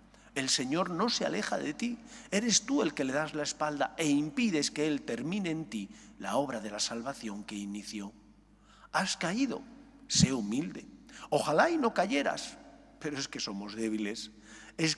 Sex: male